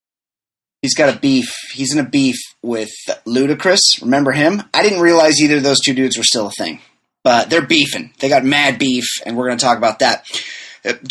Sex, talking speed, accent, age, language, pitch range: male, 210 wpm, American, 30-49, English, 115-150 Hz